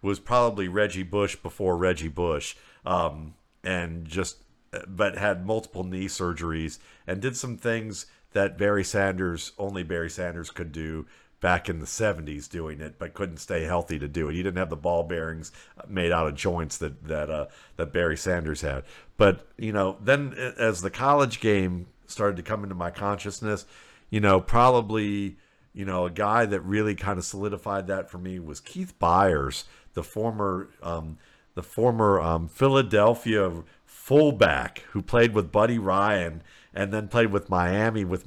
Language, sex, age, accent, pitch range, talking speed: English, male, 50-69, American, 90-115 Hz, 170 wpm